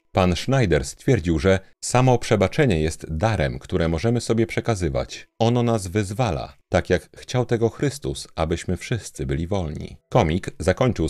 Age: 40-59